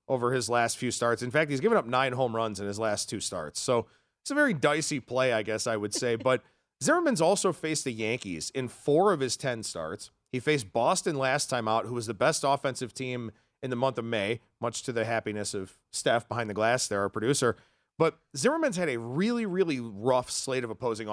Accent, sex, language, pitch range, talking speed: American, male, English, 115-155 Hz, 225 wpm